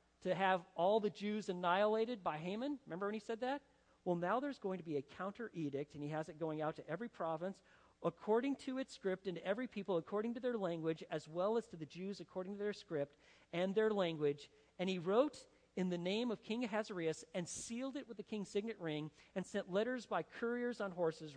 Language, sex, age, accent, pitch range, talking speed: English, male, 40-59, American, 165-220 Hz, 220 wpm